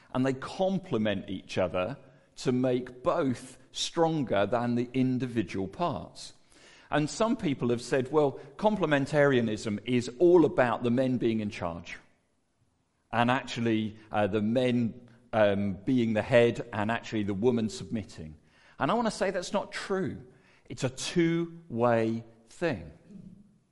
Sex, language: male, English